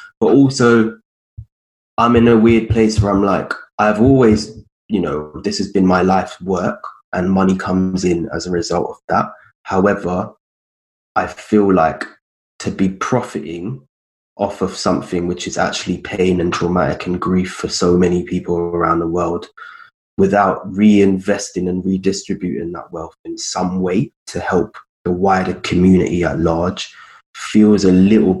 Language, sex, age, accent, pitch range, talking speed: English, male, 20-39, British, 90-110 Hz, 155 wpm